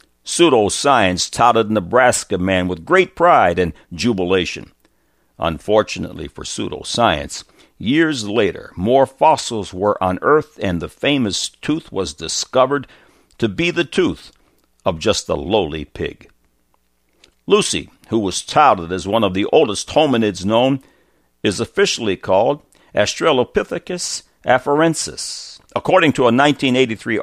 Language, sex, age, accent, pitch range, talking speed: English, male, 60-79, American, 90-120 Hz, 120 wpm